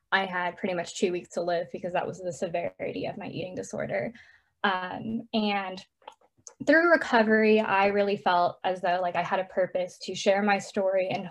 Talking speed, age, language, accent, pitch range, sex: 190 wpm, 10-29, English, American, 185-215 Hz, female